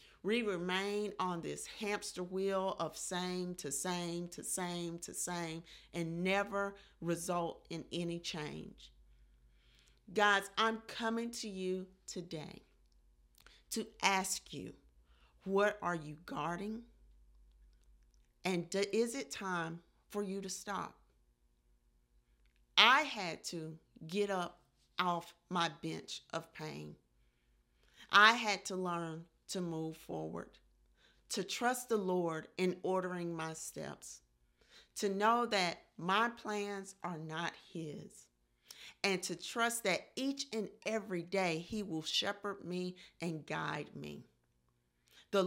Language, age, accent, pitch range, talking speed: English, 50-69, American, 150-195 Hz, 120 wpm